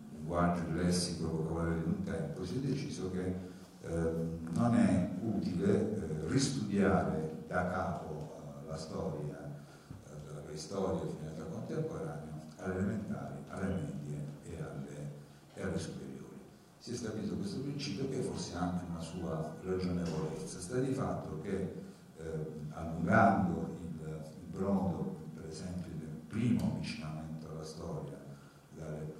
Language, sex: Italian, male